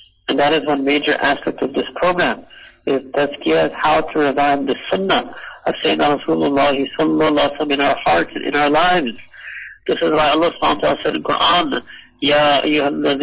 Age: 60-79